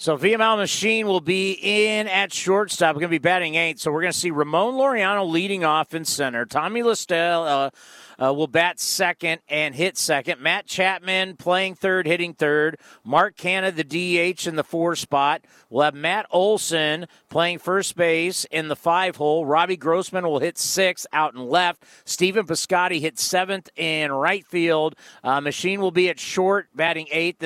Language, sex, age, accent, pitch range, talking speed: English, male, 50-69, American, 155-200 Hz, 180 wpm